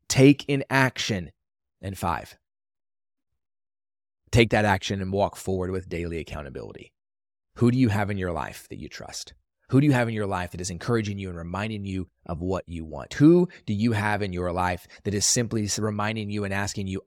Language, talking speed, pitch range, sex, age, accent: English, 200 wpm, 90-110 Hz, male, 30-49, American